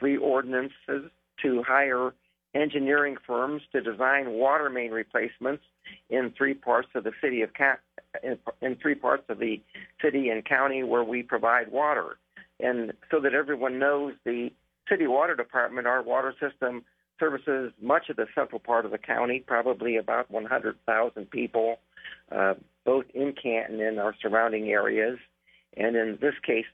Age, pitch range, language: 50-69, 110-135 Hz, English